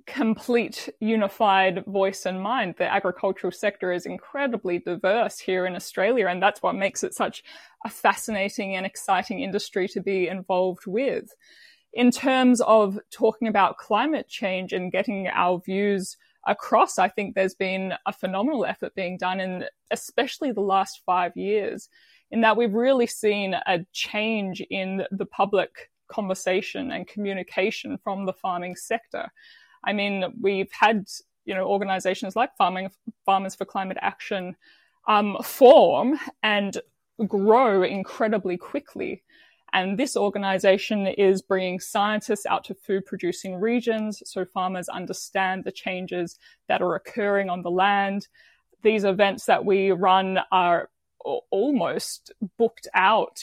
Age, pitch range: 20-39, 185-225 Hz